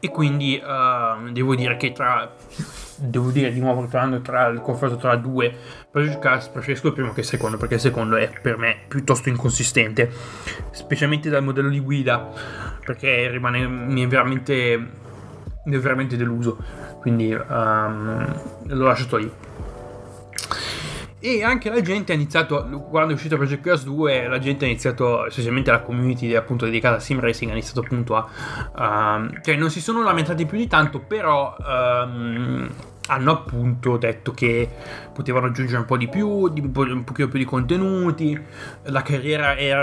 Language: Italian